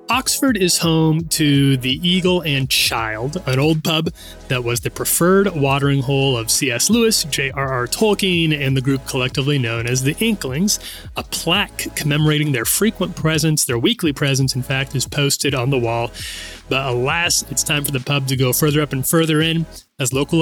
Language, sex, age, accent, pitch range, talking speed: English, male, 30-49, American, 125-160 Hz, 180 wpm